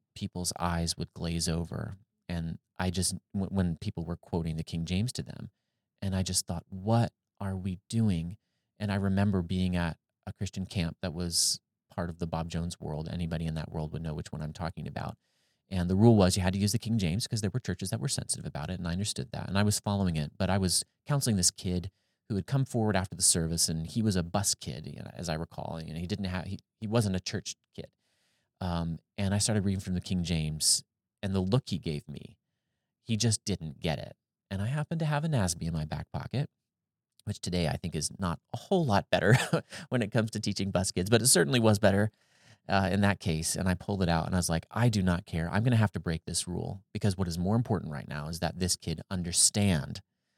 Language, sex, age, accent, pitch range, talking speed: English, male, 30-49, American, 85-110 Hz, 245 wpm